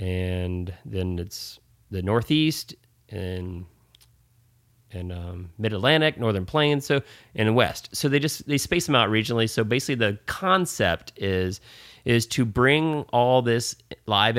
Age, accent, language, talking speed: 30-49, American, English, 145 wpm